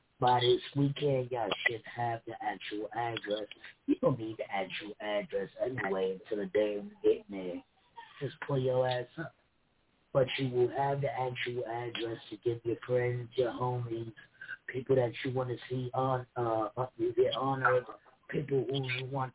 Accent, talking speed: American, 165 wpm